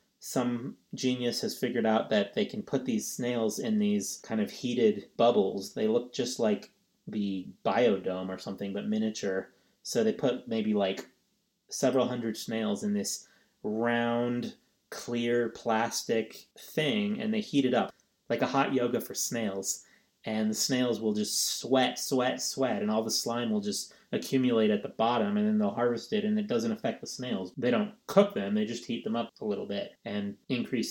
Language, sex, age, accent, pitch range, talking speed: English, male, 30-49, American, 110-185 Hz, 185 wpm